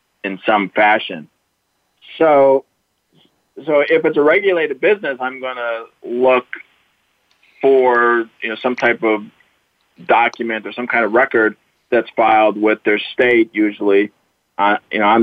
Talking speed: 140 wpm